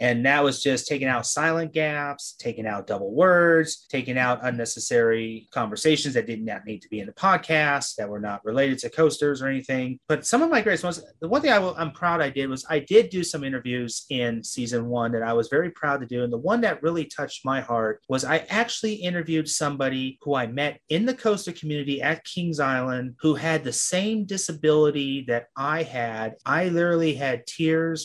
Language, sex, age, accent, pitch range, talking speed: English, male, 30-49, American, 125-165 Hz, 205 wpm